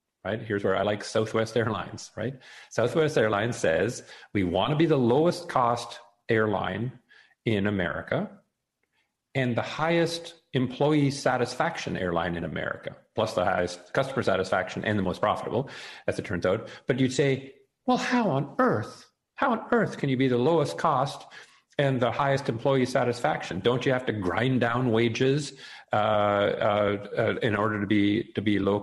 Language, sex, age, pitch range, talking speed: English, male, 40-59, 105-140 Hz, 165 wpm